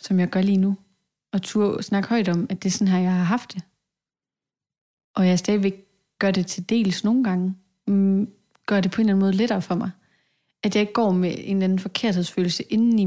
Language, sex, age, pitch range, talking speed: Danish, female, 30-49, 180-205 Hz, 225 wpm